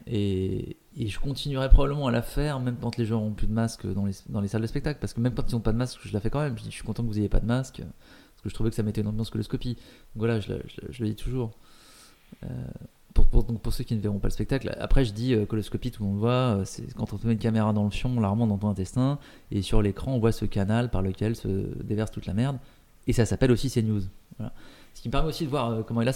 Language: French